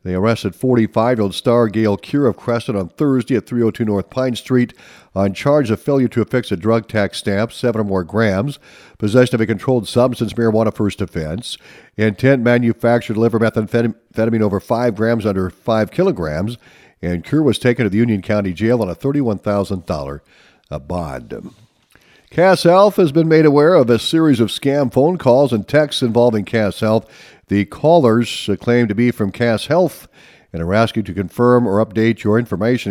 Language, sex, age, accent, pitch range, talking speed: English, male, 50-69, American, 95-120 Hz, 170 wpm